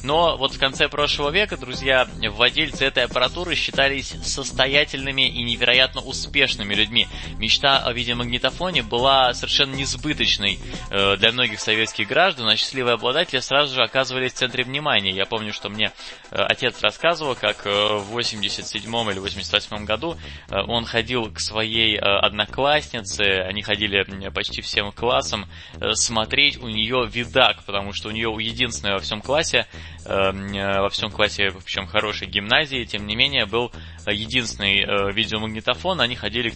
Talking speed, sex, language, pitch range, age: 140 wpm, male, Russian, 100-125 Hz, 20-39